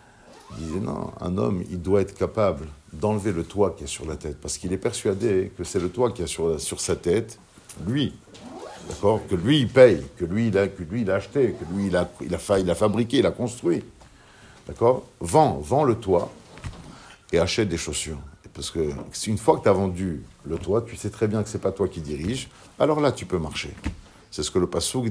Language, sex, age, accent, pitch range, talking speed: French, male, 60-79, French, 95-140 Hz, 240 wpm